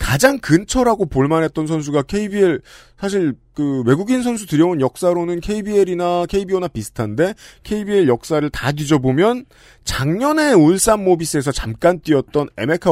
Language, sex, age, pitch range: Korean, male, 40-59, 125-180 Hz